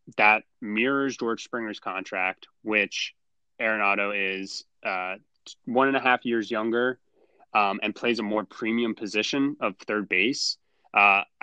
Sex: male